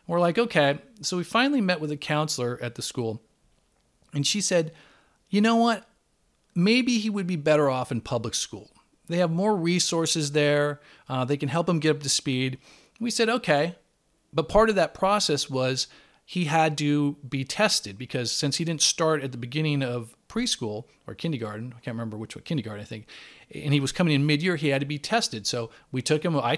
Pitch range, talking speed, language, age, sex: 130-175 Hz, 210 wpm, English, 40-59, male